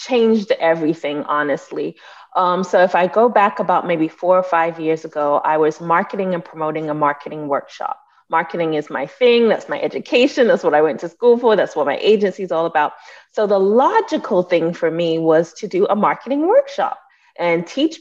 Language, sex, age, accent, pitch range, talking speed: English, female, 30-49, American, 165-255 Hz, 195 wpm